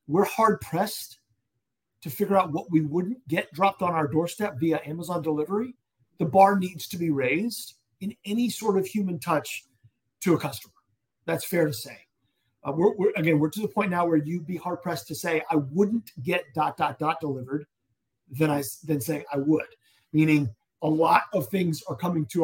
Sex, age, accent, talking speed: male, 40-59, American, 180 wpm